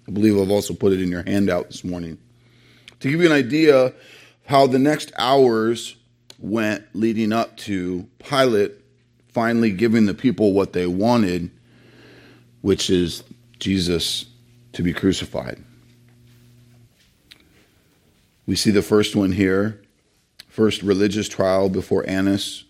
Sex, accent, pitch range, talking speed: male, American, 95-115 Hz, 130 wpm